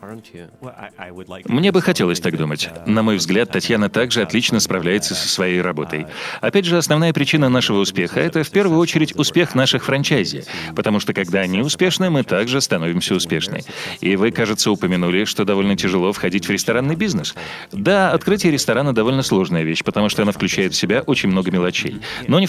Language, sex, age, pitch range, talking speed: Russian, male, 30-49, 95-140 Hz, 180 wpm